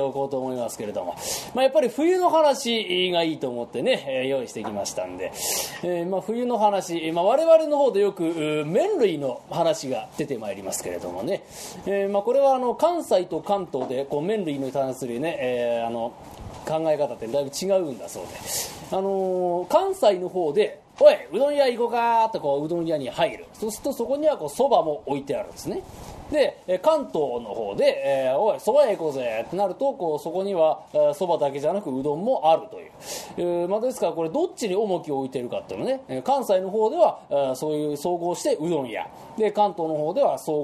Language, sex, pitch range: Japanese, male, 150-230 Hz